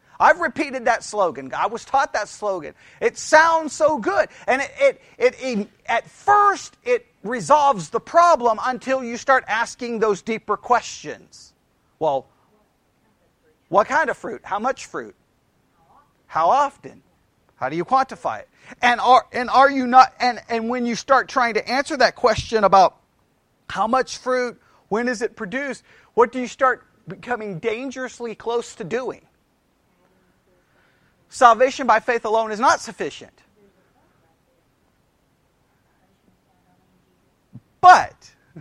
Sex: male